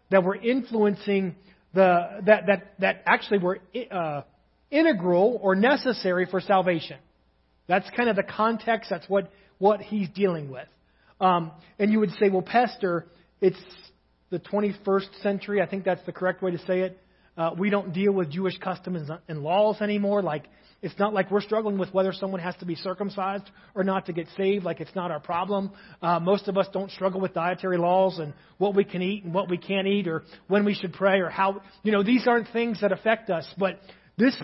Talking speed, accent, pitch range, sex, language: 200 wpm, American, 180-215 Hz, male, English